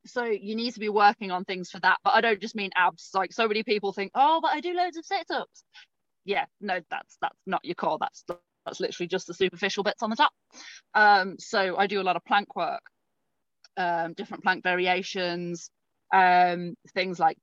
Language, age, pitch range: English, 30-49, 180-225 Hz